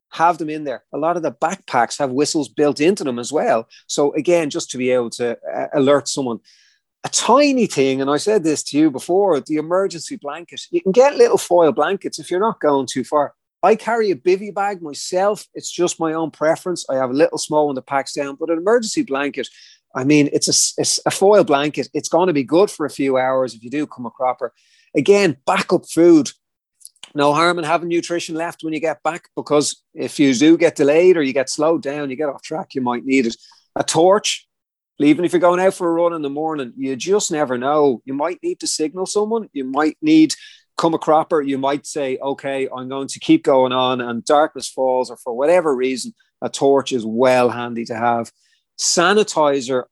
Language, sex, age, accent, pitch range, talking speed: English, male, 30-49, Irish, 135-170 Hz, 220 wpm